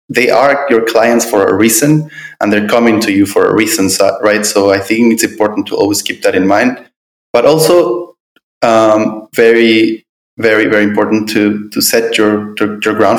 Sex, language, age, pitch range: male, English, 20-39, 100-115 Hz